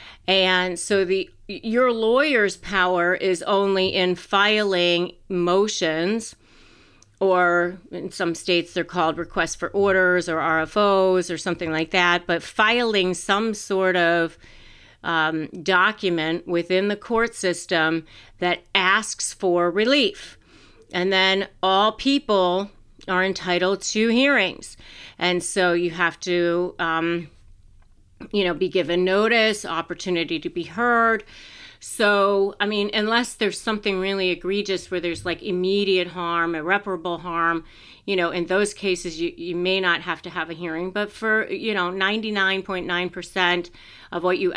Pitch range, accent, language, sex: 175-200 Hz, American, English, female